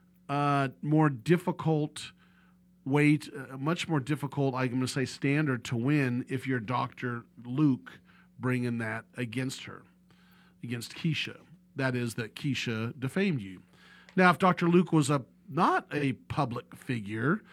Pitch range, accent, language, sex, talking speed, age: 125-160 Hz, American, English, male, 140 wpm, 40-59